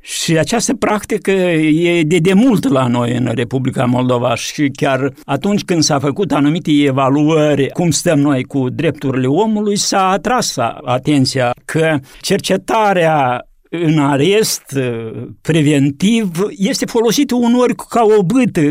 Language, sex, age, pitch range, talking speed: Romanian, male, 60-79, 150-210 Hz, 130 wpm